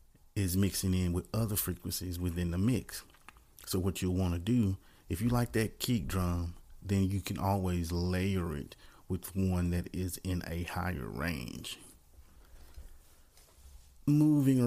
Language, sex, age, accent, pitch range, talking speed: English, male, 40-59, American, 90-105 Hz, 145 wpm